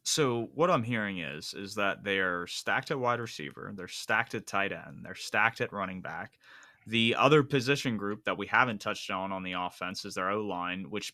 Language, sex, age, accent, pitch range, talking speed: English, male, 20-39, American, 100-135 Hz, 205 wpm